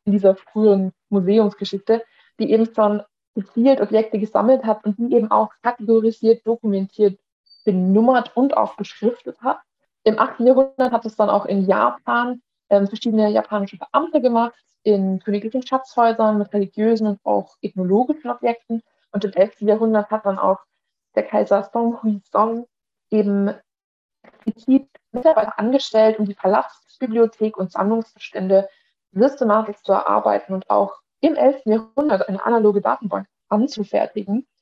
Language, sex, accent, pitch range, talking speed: German, female, German, 205-235 Hz, 135 wpm